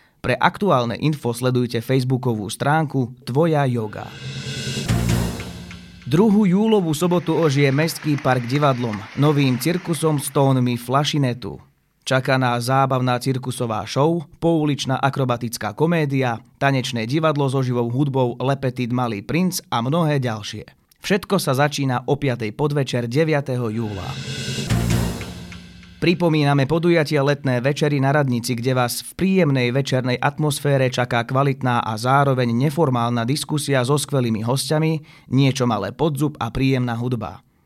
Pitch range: 120-150 Hz